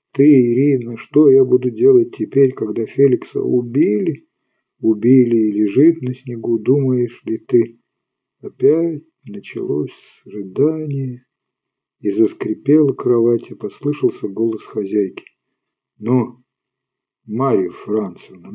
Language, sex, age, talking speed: Ukrainian, male, 50-69, 100 wpm